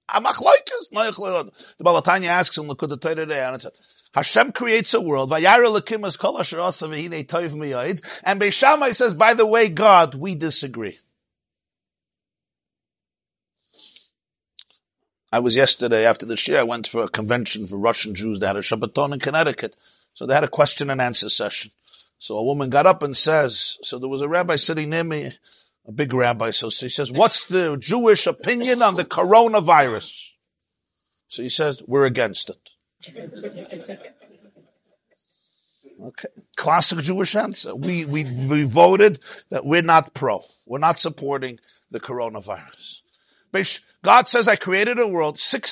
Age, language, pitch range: 50-69, English, 140-215 Hz